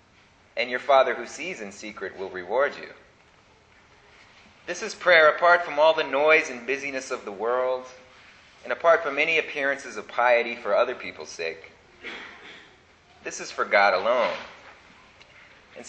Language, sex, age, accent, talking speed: English, male, 30-49, American, 150 wpm